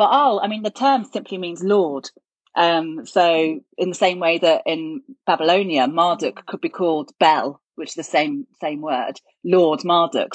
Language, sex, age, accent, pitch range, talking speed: English, female, 40-59, British, 165-210 Hz, 175 wpm